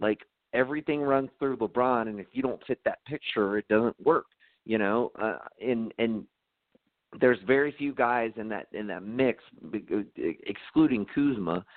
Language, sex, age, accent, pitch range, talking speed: English, male, 40-59, American, 105-130 Hz, 160 wpm